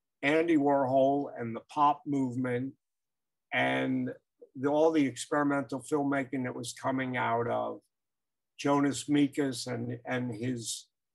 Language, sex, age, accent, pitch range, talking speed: English, male, 50-69, American, 115-140 Hz, 110 wpm